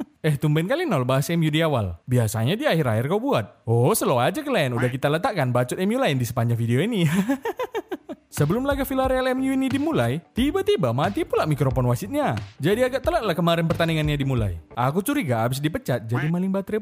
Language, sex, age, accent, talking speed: Indonesian, male, 20-39, native, 190 wpm